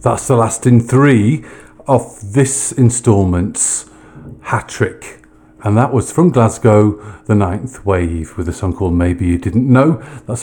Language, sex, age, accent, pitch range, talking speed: English, male, 50-69, British, 95-120 Hz, 150 wpm